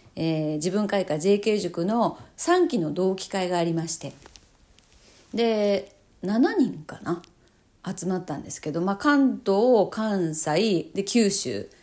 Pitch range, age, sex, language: 165-260 Hz, 40-59, female, Japanese